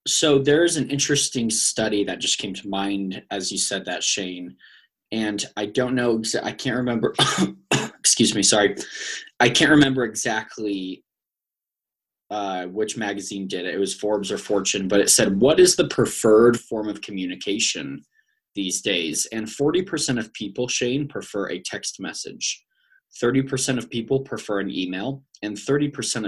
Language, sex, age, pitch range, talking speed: English, male, 20-39, 105-135 Hz, 155 wpm